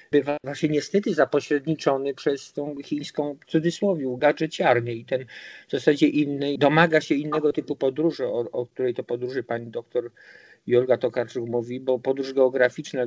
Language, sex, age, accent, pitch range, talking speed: Polish, male, 50-69, native, 120-145 Hz, 145 wpm